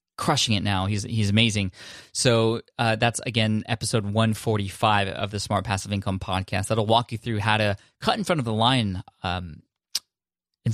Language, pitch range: English, 100-120 Hz